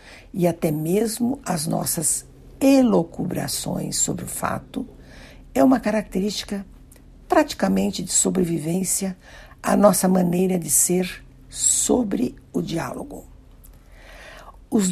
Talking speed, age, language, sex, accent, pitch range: 95 wpm, 60-79, Portuguese, female, Brazilian, 160-200 Hz